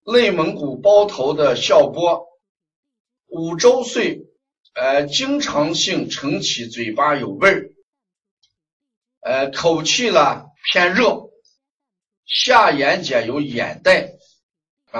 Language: Chinese